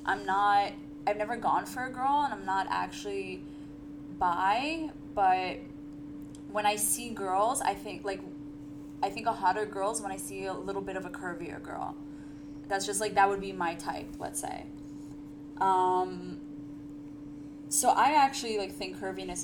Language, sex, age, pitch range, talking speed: English, female, 20-39, 145-225 Hz, 165 wpm